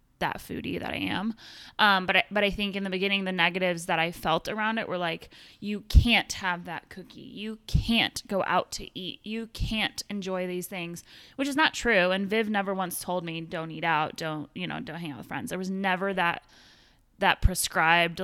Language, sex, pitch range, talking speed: English, female, 170-205 Hz, 215 wpm